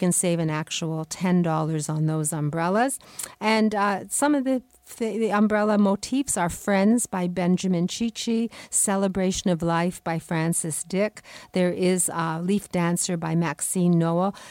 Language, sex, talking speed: English, female, 150 wpm